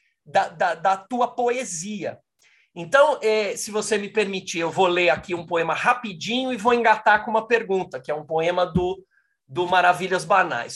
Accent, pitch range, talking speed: Brazilian, 165-220 Hz, 180 wpm